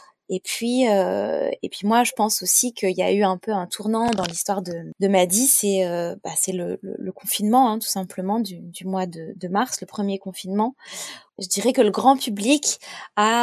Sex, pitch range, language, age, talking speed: female, 190-235 Hz, French, 20-39, 215 wpm